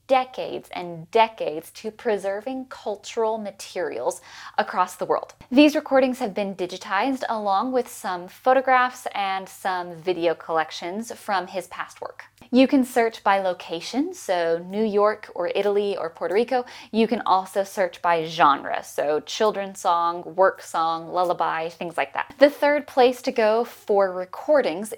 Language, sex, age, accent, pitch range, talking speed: English, female, 10-29, American, 185-245 Hz, 150 wpm